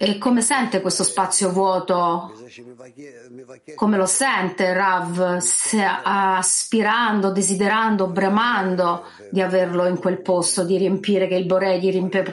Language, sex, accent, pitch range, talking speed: Italian, female, native, 180-225 Hz, 120 wpm